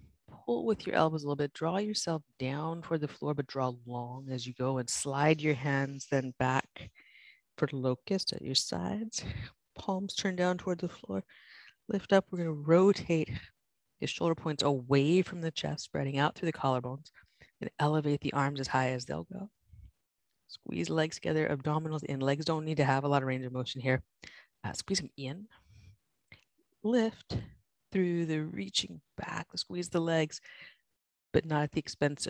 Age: 30-49